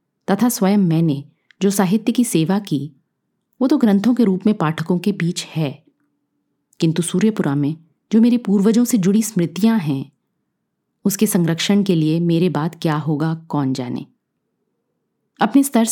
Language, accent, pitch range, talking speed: Hindi, native, 160-210 Hz, 150 wpm